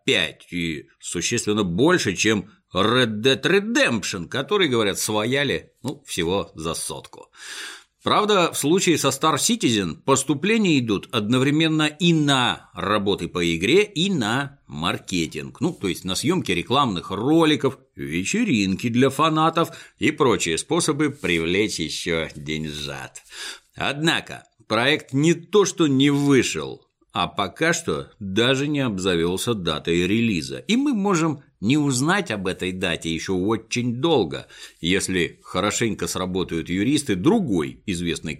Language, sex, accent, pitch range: Russian, male, native, 100-155 Hz